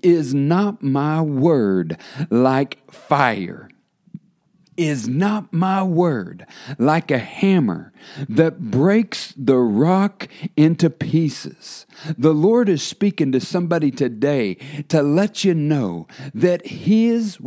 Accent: American